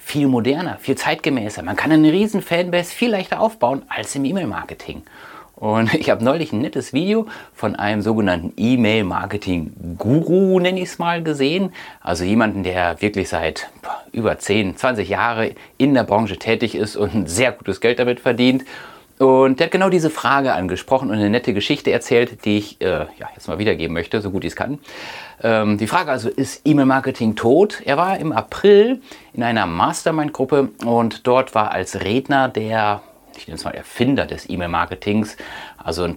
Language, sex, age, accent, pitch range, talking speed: German, male, 30-49, German, 105-140 Hz, 175 wpm